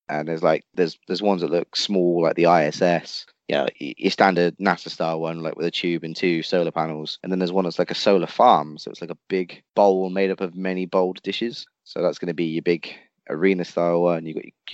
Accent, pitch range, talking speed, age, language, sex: British, 85-105 Hz, 255 wpm, 20-39, English, male